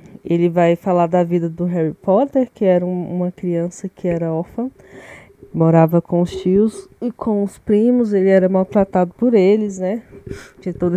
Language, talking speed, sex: Portuguese, 175 wpm, female